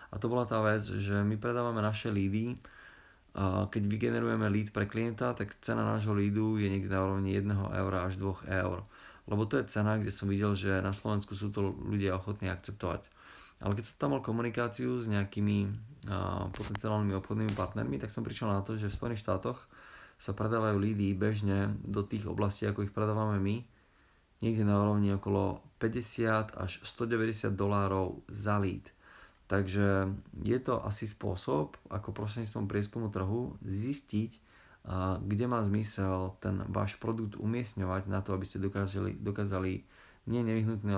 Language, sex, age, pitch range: Slovak, male, 30-49, 95-110 Hz